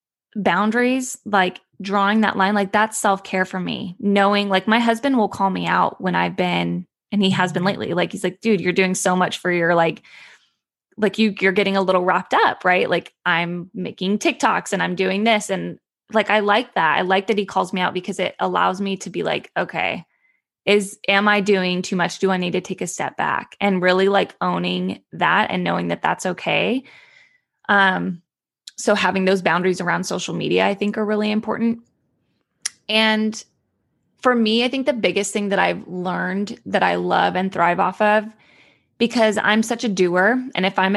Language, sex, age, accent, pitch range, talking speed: English, female, 20-39, American, 185-215 Hz, 200 wpm